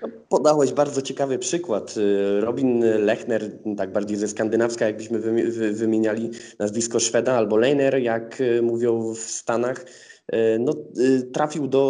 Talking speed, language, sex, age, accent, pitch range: 115 wpm, Polish, male, 20-39, native, 105-125 Hz